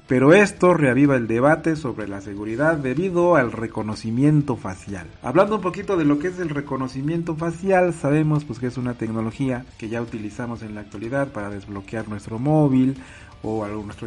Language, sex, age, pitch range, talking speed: Spanish, male, 40-59, 110-150 Hz, 165 wpm